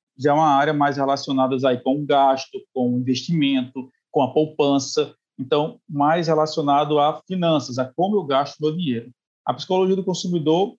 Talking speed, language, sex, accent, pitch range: 160 wpm, Portuguese, male, Brazilian, 145-180 Hz